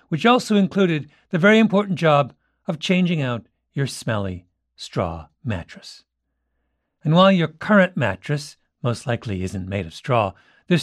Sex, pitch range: male, 110-170 Hz